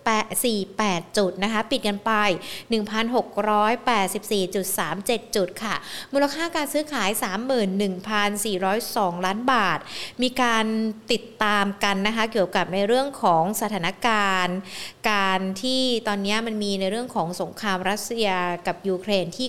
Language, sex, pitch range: Thai, female, 190-245 Hz